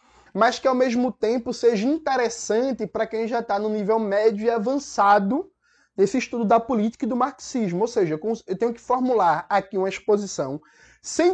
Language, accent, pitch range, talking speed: Portuguese, Brazilian, 200-250 Hz, 175 wpm